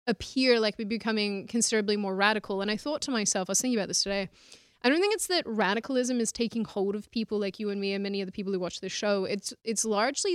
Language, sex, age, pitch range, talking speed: English, female, 20-39, 195-225 Hz, 260 wpm